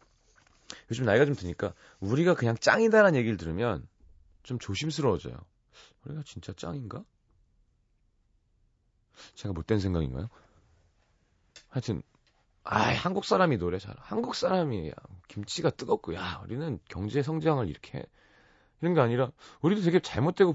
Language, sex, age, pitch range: Korean, male, 30-49, 95-155 Hz